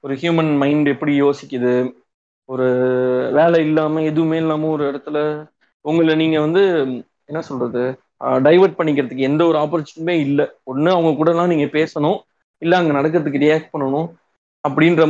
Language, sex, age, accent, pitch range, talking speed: Tamil, male, 20-39, native, 145-175 Hz, 135 wpm